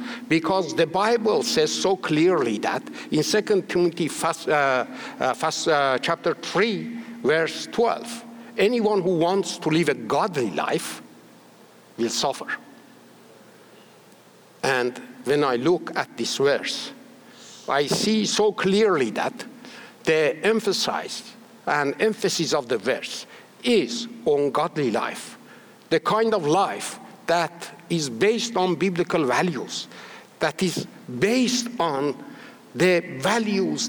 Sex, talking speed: male, 120 wpm